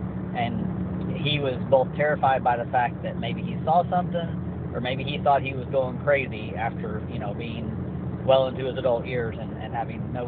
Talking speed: 200 wpm